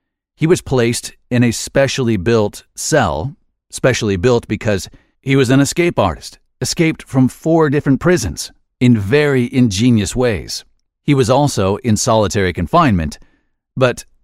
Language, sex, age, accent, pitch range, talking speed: English, male, 40-59, American, 100-135 Hz, 135 wpm